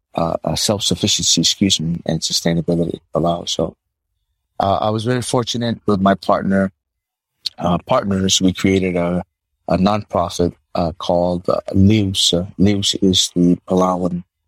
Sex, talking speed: male, 135 wpm